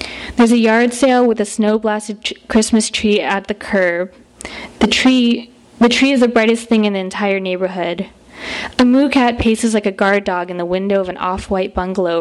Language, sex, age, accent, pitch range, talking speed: English, female, 20-39, American, 185-230 Hz, 195 wpm